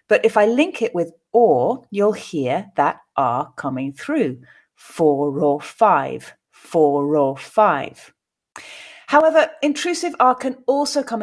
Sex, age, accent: female, 30-49, British